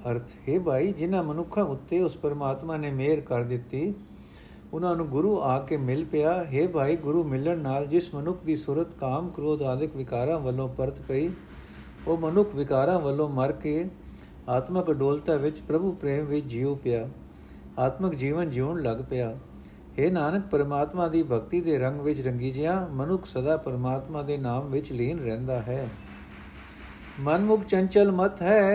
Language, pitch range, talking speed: Punjabi, 125-180 Hz, 140 wpm